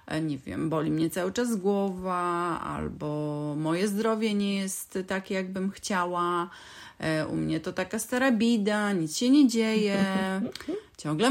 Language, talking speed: Polish, 140 wpm